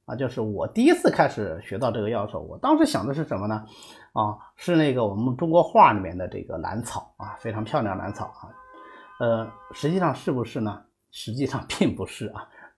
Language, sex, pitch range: Chinese, male, 105-160 Hz